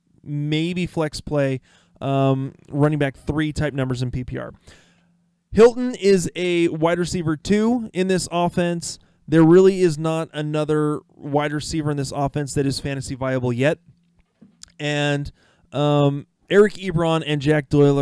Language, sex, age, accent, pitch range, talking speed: English, male, 20-39, American, 140-175 Hz, 140 wpm